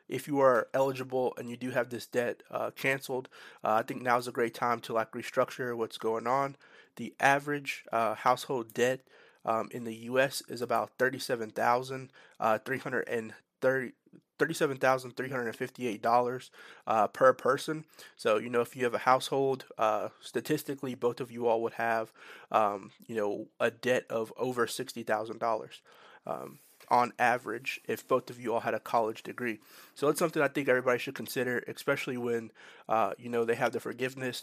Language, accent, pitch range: English, American, 115-135 Hz